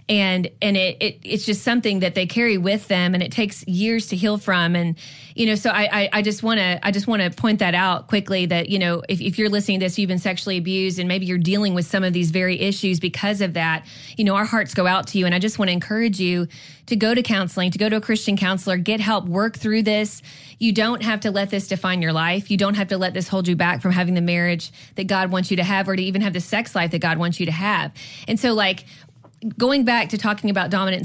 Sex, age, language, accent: female, 20-39, English, American